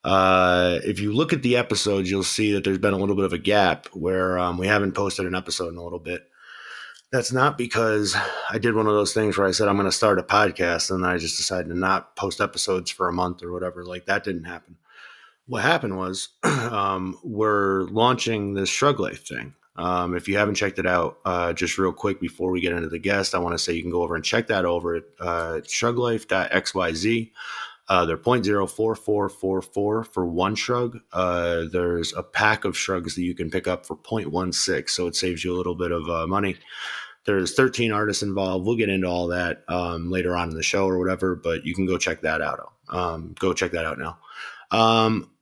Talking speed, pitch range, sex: 225 wpm, 90-105 Hz, male